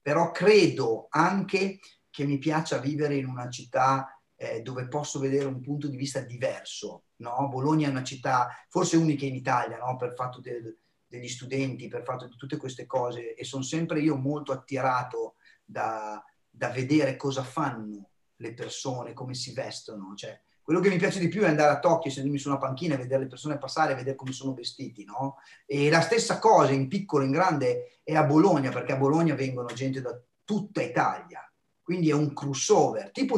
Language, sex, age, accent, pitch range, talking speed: Italian, male, 30-49, native, 135-170 Hz, 190 wpm